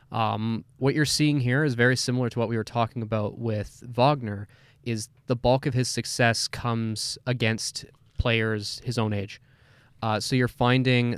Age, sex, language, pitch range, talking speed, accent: 20-39, male, English, 110-125 Hz, 170 wpm, American